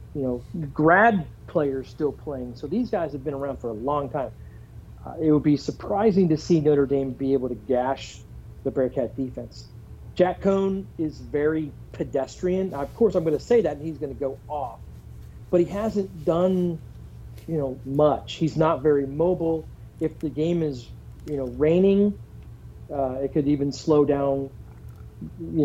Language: English